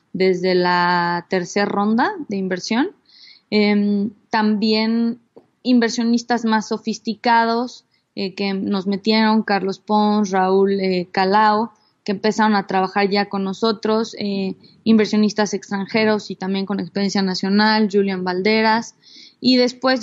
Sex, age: female, 20-39